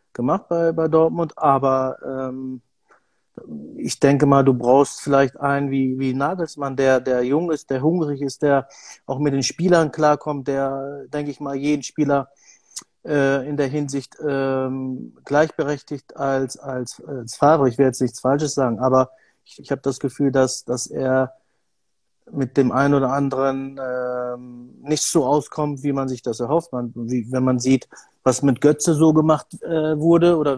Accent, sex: German, male